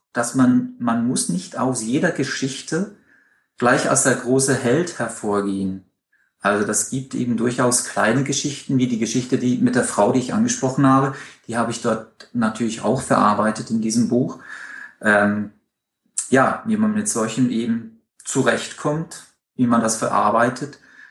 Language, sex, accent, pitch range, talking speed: German, male, German, 115-140 Hz, 155 wpm